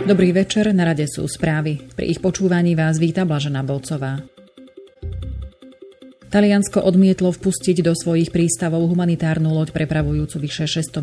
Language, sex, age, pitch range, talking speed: Slovak, female, 30-49, 150-175 Hz, 130 wpm